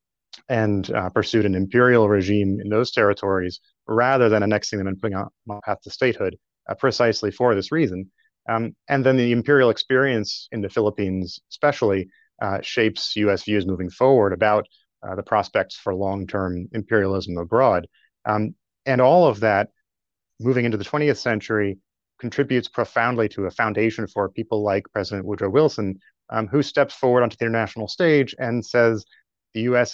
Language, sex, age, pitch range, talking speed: English, male, 30-49, 100-125 Hz, 165 wpm